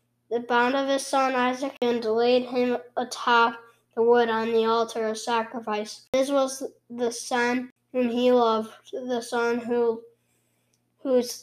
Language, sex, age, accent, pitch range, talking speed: English, female, 10-29, American, 230-260 Hz, 145 wpm